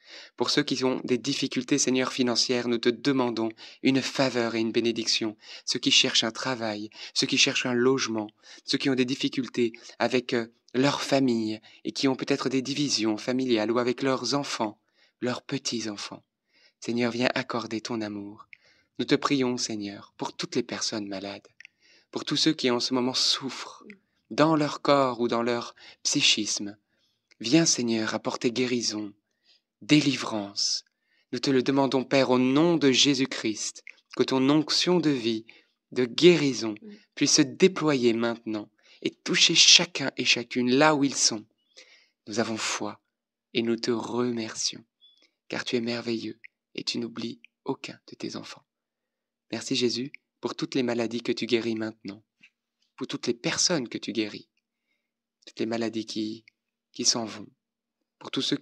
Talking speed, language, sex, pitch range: 160 wpm, French, male, 115-135 Hz